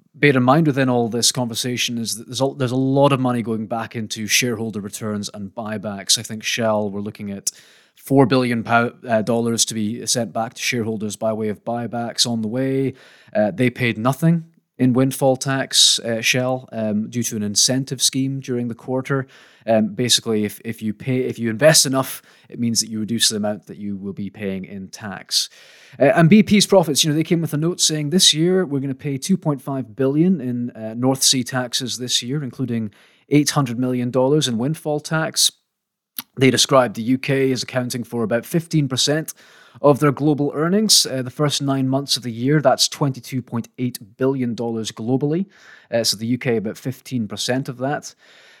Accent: British